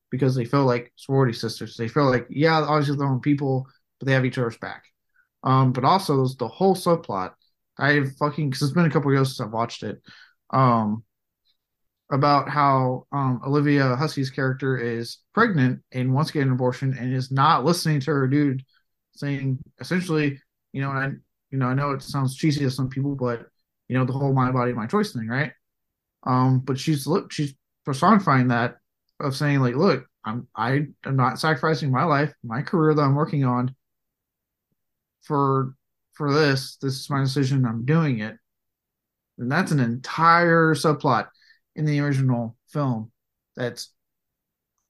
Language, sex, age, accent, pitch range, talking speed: English, male, 20-39, American, 125-150 Hz, 175 wpm